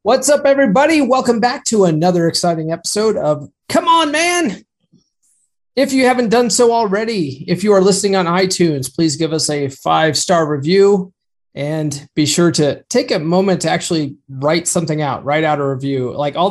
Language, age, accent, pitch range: English, 30-49, American, 145-210 Hz